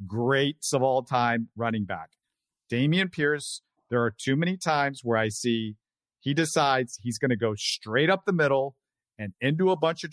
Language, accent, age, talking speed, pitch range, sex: English, American, 50-69, 185 wpm, 115-150 Hz, male